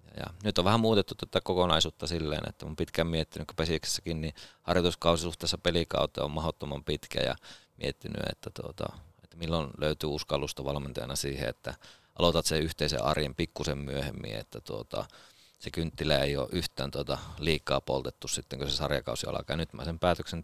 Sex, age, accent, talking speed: male, 30-49, native, 165 wpm